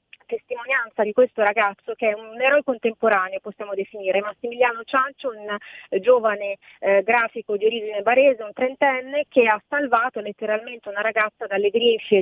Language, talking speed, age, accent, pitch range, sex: Italian, 145 wpm, 30-49, native, 205-245 Hz, female